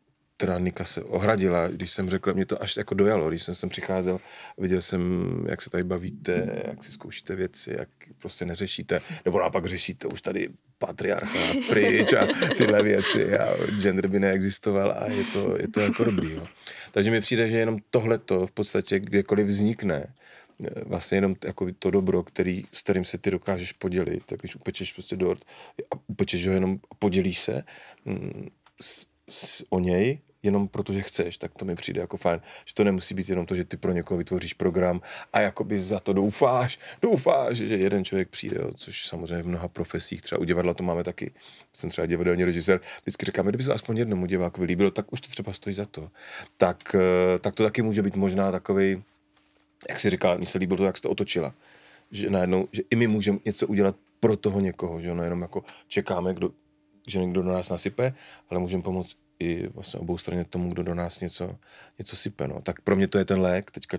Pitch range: 90-100 Hz